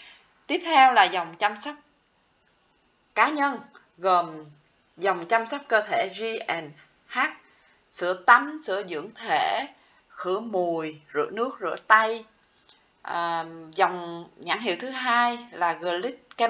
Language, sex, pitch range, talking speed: Vietnamese, female, 175-245 Hz, 125 wpm